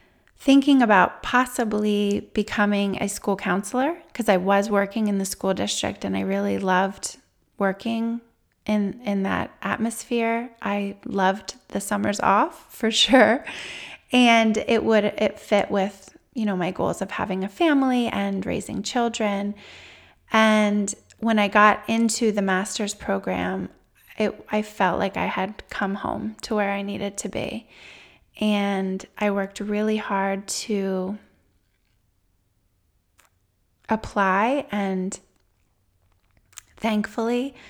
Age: 20-39